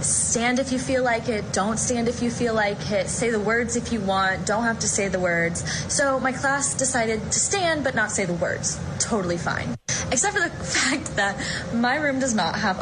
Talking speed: 225 wpm